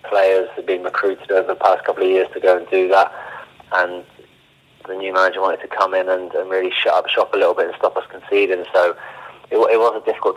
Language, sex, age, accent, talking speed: English, male, 20-39, British, 245 wpm